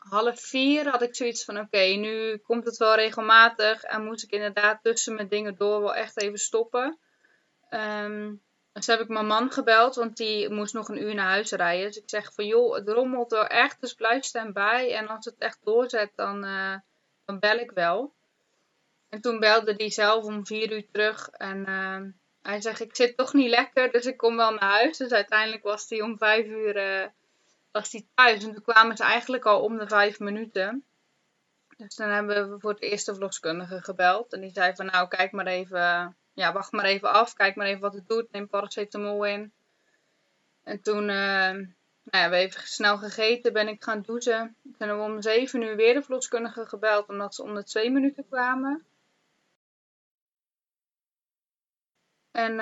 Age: 20-39